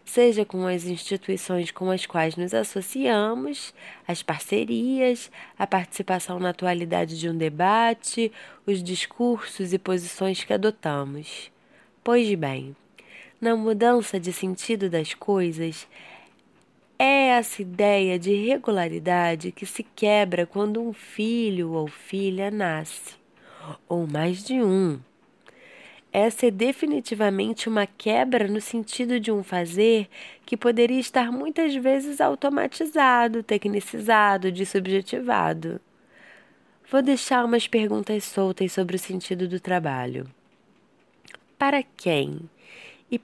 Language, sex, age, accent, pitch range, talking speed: Portuguese, female, 20-39, Brazilian, 180-240 Hz, 110 wpm